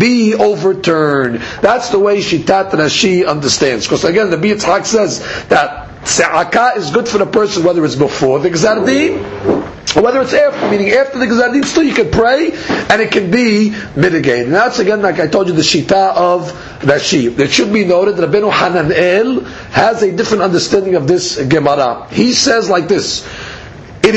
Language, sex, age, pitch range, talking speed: English, male, 50-69, 180-230 Hz, 175 wpm